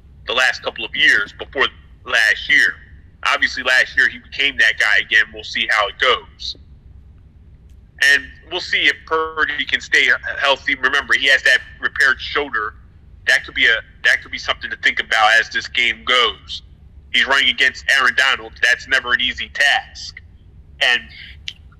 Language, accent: English, American